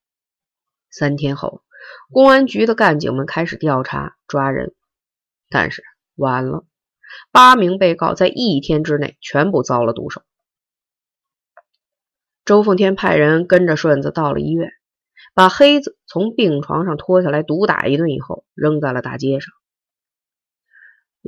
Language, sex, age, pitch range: Chinese, female, 30-49, 145-220 Hz